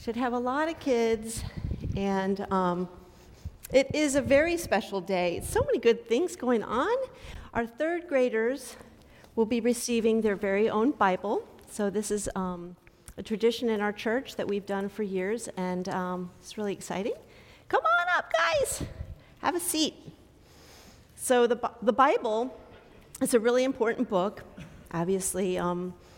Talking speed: 155 wpm